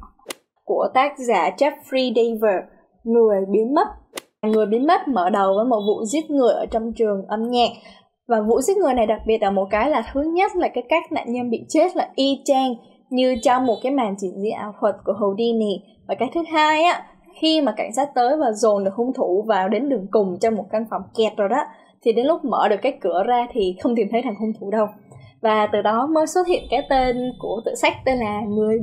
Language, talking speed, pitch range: Vietnamese, 235 wpm, 210-270 Hz